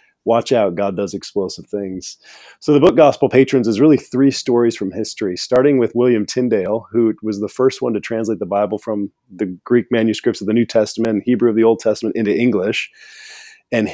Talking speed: 200 wpm